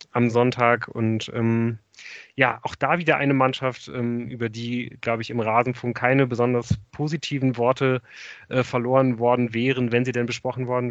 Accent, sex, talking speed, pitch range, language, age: German, male, 165 wpm, 115-130 Hz, German, 30-49